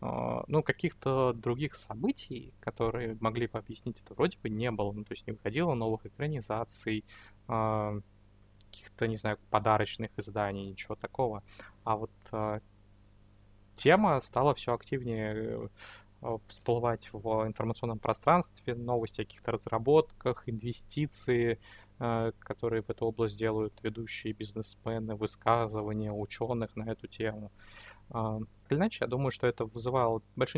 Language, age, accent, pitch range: Russian, 20-39, native, 105-125 Hz